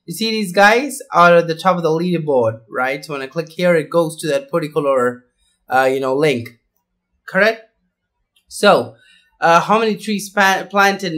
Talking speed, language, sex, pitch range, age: 185 wpm, English, male, 150-190 Hz, 20-39